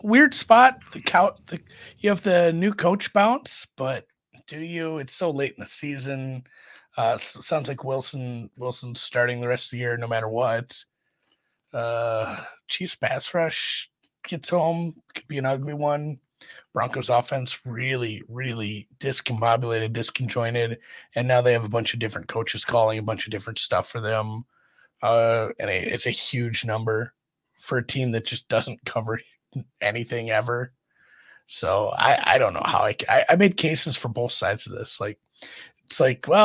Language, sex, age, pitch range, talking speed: English, male, 30-49, 115-155 Hz, 170 wpm